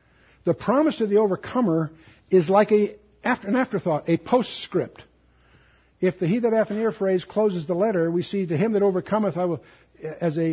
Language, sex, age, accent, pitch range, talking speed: Spanish, male, 60-79, American, 140-195 Hz, 195 wpm